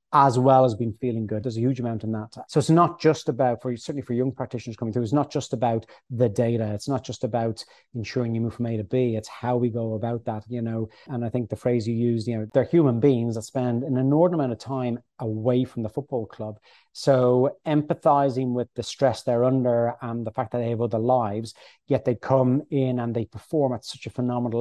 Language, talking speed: English, 245 wpm